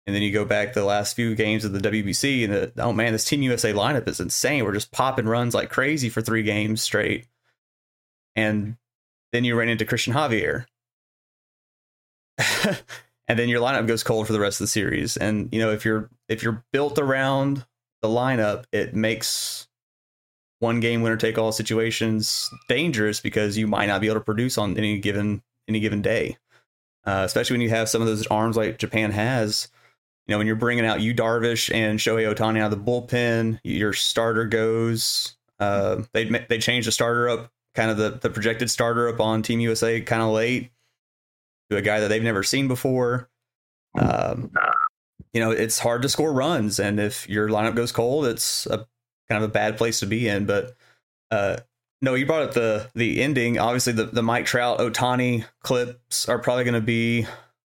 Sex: male